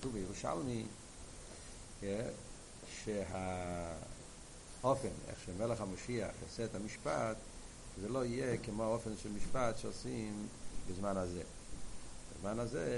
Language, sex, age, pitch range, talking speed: Hebrew, male, 60-79, 90-120 Hz, 100 wpm